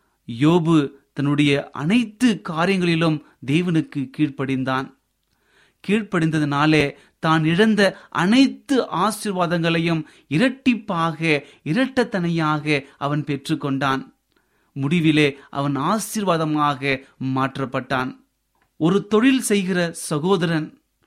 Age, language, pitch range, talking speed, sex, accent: 30-49, Tamil, 155-215 Hz, 65 wpm, male, native